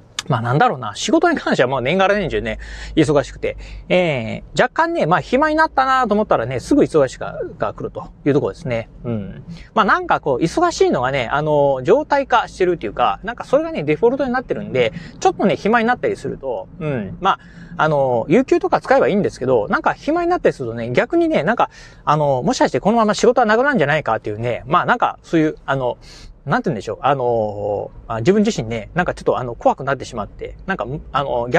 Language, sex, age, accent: Japanese, male, 30-49, native